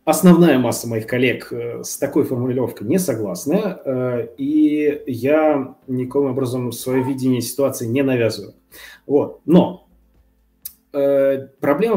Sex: male